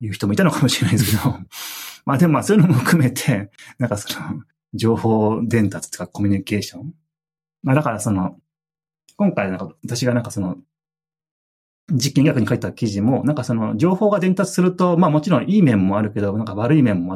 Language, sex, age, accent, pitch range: Japanese, male, 30-49, native, 105-155 Hz